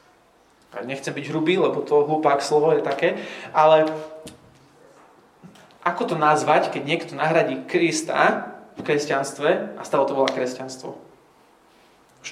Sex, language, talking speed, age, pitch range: male, Slovak, 120 wpm, 20-39, 140-175 Hz